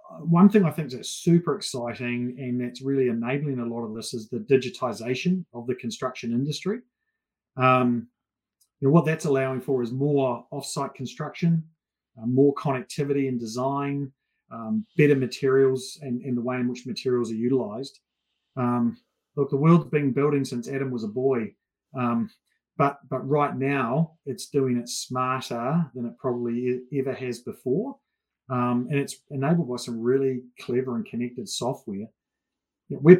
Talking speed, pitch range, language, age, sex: 155 wpm, 125-160 Hz, English, 30-49, male